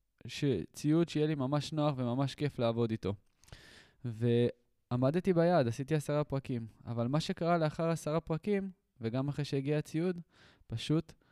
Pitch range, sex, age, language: 115-145 Hz, male, 20-39, Hebrew